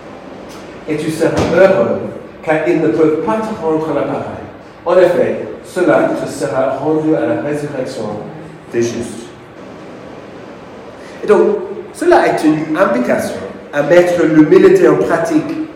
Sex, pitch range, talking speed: male, 145-185 Hz, 130 wpm